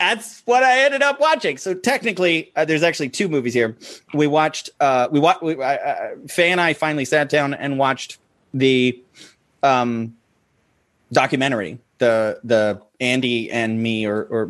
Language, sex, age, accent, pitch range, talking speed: English, male, 30-49, American, 120-155 Hz, 155 wpm